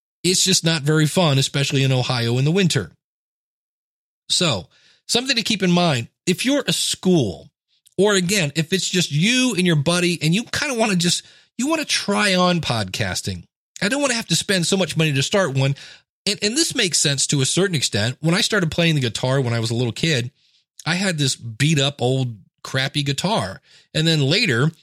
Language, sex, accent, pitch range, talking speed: English, male, American, 140-185 Hz, 215 wpm